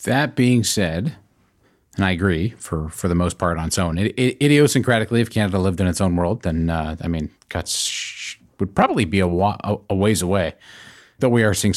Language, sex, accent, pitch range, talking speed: English, male, American, 90-110 Hz, 210 wpm